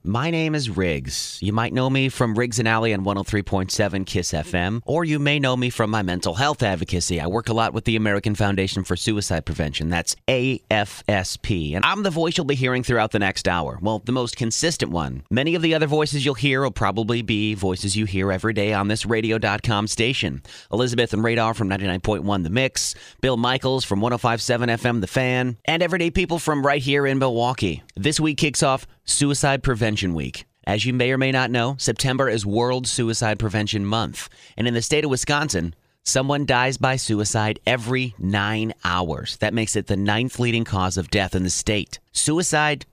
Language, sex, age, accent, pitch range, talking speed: English, male, 30-49, American, 100-130 Hz, 195 wpm